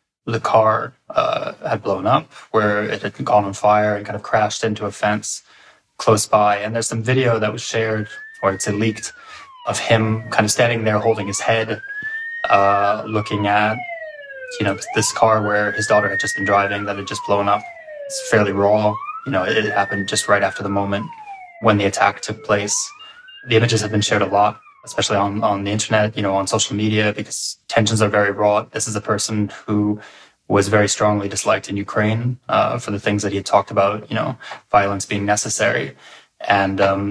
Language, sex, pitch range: English, male, 100-115 Hz